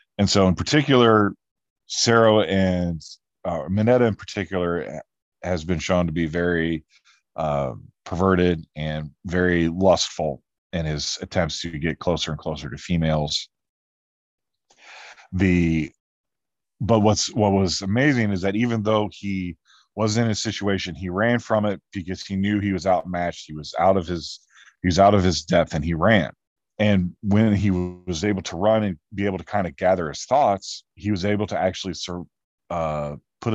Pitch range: 85-100 Hz